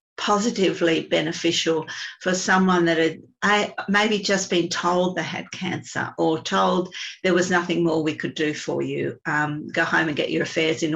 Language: English